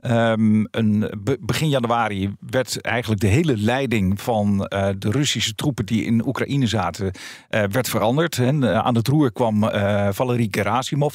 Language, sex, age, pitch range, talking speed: Dutch, male, 50-69, 110-135 Hz, 160 wpm